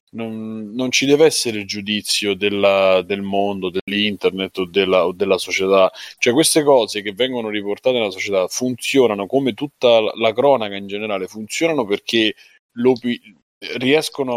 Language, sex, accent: Italian, male, native